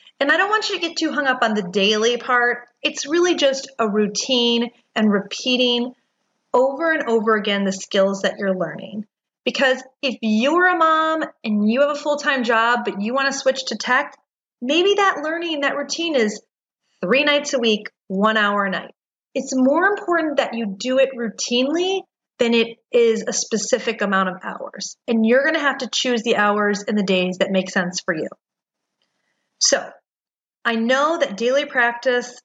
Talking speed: 185 wpm